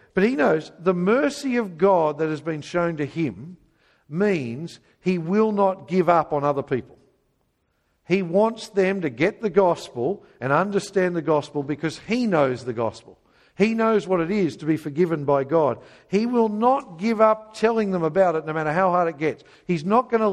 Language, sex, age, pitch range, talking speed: English, male, 50-69, 150-200 Hz, 200 wpm